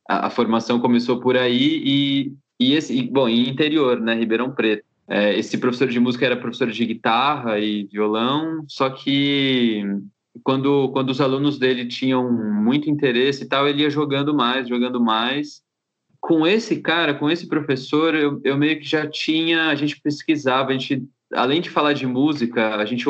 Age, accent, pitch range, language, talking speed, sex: 20-39, Brazilian, 120-145 Hz, Portuguese, 175 wpm, male